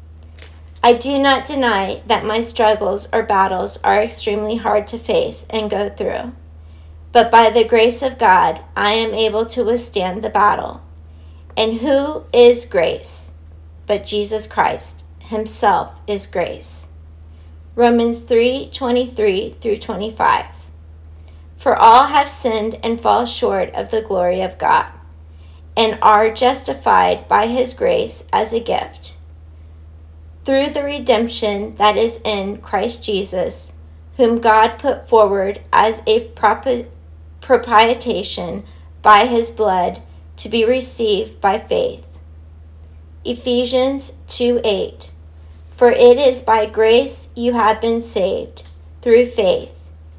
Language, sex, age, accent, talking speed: English, female, 40-59, American, 125 wpm